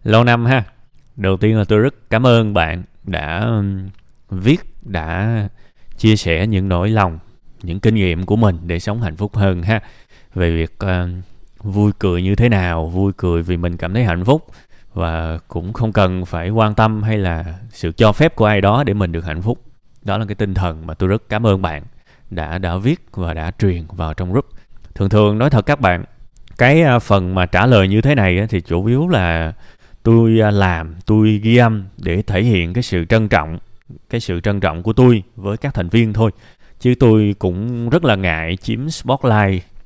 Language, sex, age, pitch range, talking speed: Vietnamese, male, 20-39, 90-115 Hz, 205 wpm